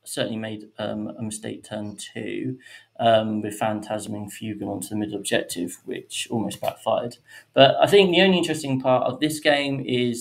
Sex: male